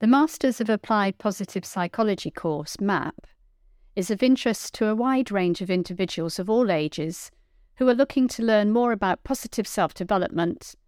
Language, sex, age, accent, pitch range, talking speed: English, female, 50-69, British, 170-230 Hz, 160 wpm